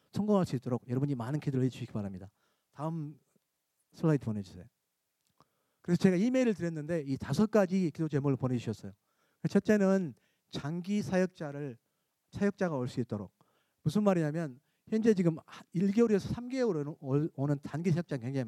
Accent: native